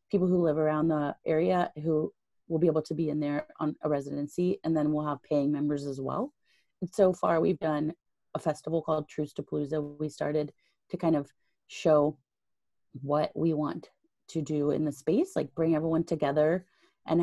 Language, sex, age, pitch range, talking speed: English, female, 30-49, 145-165 Hz, 190 wpm